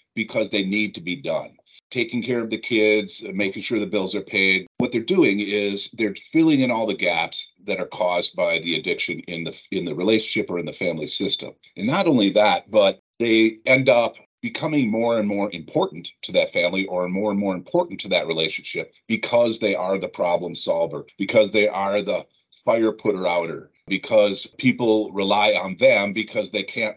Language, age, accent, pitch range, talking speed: English, 50-69, American, 100-125 Hz, 195 wpm